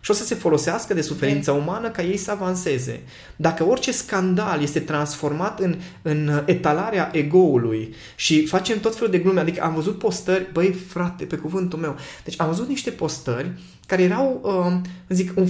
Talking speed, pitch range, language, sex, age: 175 wpm, 145-210 Hz, Romanian, male, 20-39